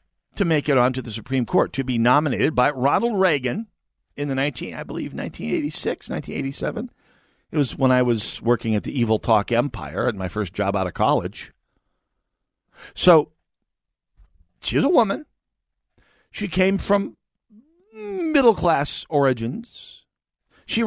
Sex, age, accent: male, 50-69, American